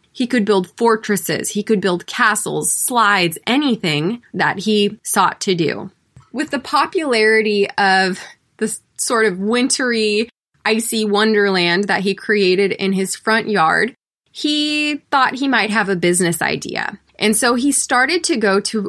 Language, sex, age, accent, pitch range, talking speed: English, female, 20-39, American, 195-260 Hz, 150 wpm